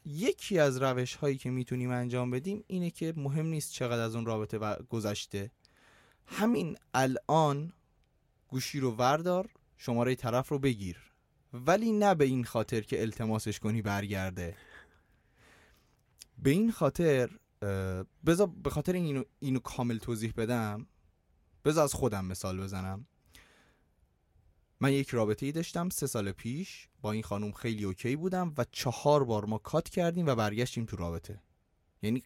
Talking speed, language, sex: 140 wpm, Persian, male